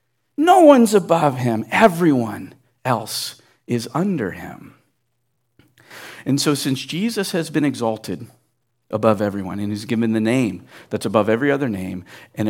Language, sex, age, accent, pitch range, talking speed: English, male, 50-69, American, 110-150 Hz, 140 wpm